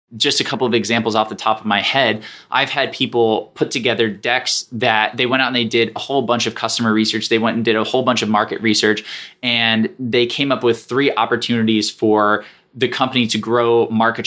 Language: English